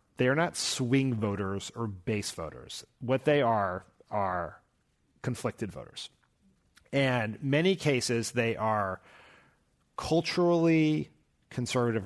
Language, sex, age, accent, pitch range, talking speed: English, male, 30-49, American, 105-135 Hz, 105 wpm